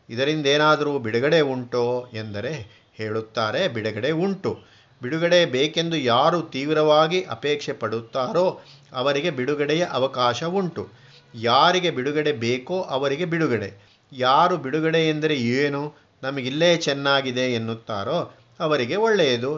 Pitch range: 125-155 Hz